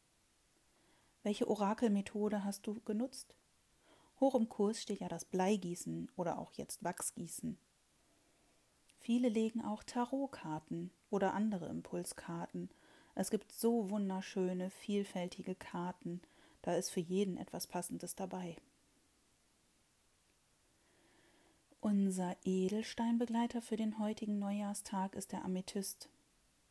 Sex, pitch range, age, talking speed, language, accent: female, 190-230 Hz, 30-49, 100 wpm, German, German